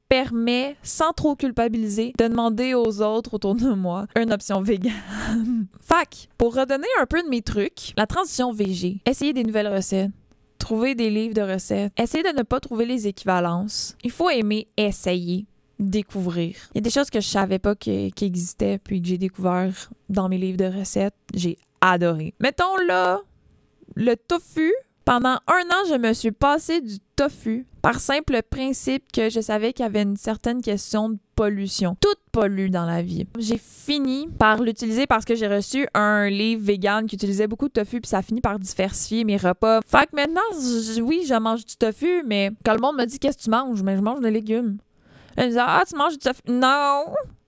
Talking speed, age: 200 wpm, 20-39